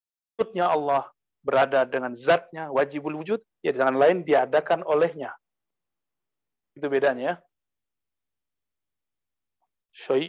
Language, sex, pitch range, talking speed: Indonesian, male, 135-190 Hz, 95 wpm